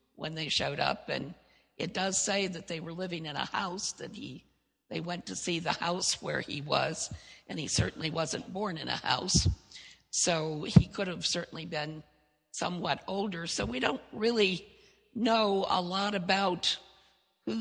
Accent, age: American, 50-69